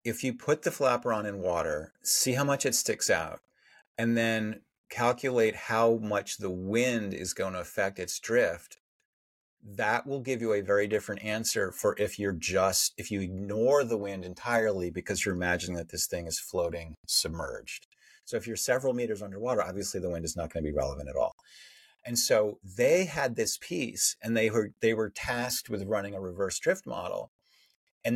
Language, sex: English, male